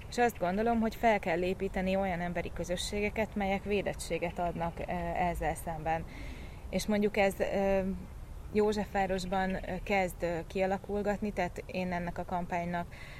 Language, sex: Hungarian, female